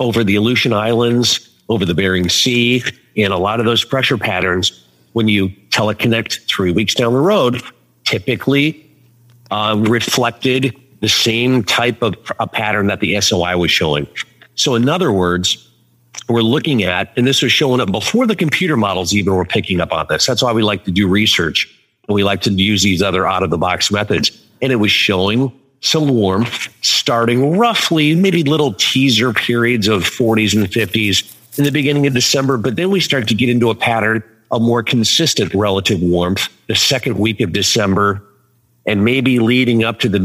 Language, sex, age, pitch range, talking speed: English, male, 50-69, 100-130 Hz, 185 wpm